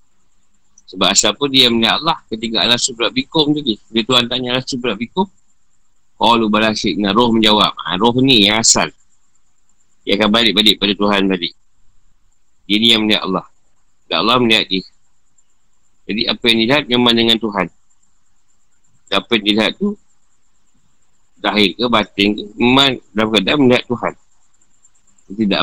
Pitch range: 100-130 Hz